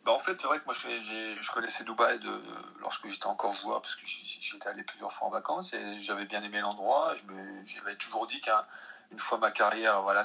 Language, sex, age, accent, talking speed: French, male, 30-49, French, 245 wpm